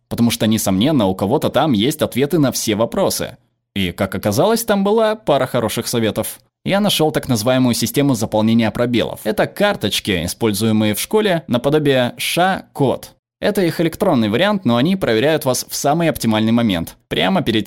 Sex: male